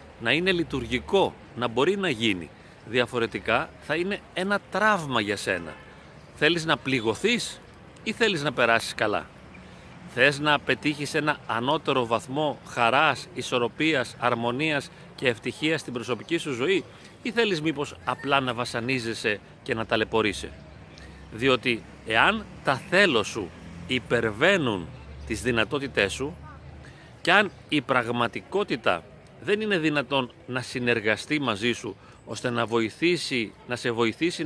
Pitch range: 120-170 Hz